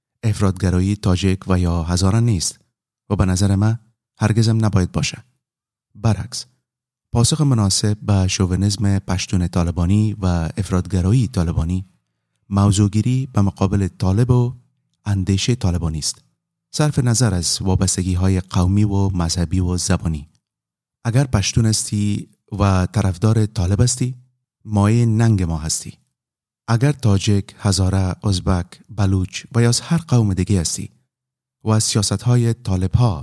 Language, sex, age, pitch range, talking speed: English, male, 30-49, 95-125 Hz, 125 wpm